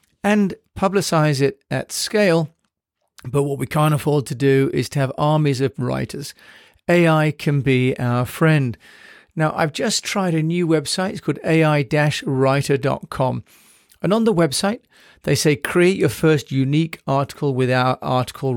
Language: English